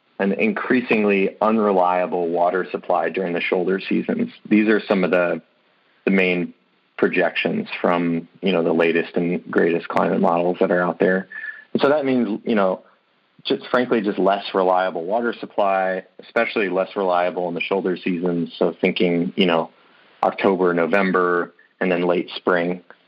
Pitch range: 90-100 Hz